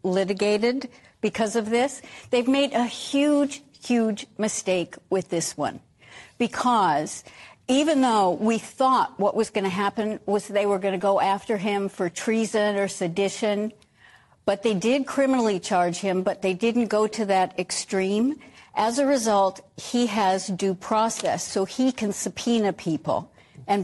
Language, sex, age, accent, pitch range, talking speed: English, female, 60-79, American, 190-230 Hz, 155 wpm